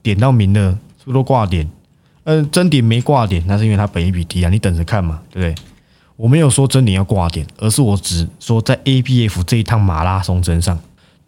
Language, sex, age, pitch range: Chinese, male, 20-39, 90-125 Hz